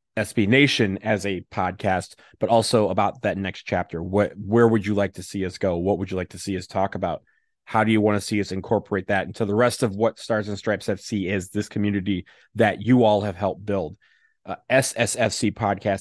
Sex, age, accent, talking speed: male, 30-49, American, 215 wpm